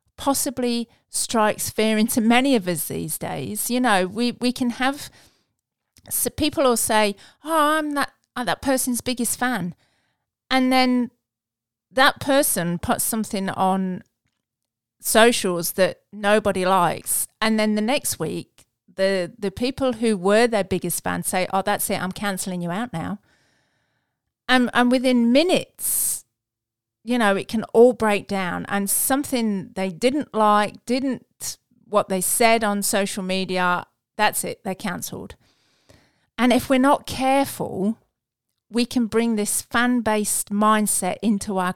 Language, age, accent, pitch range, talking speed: English, 40-59, British, 190-245 Hz, 145 wpm